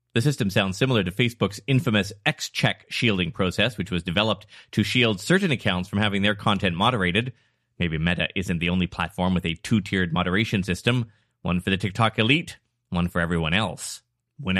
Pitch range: 100-145 Hz